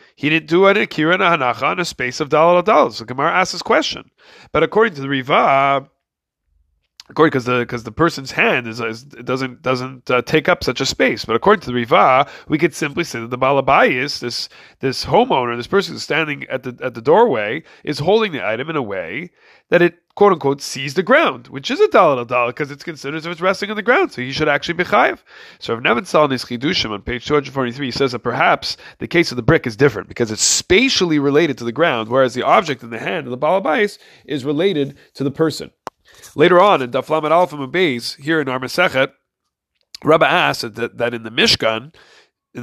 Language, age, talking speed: English, 30-49, 215 wpm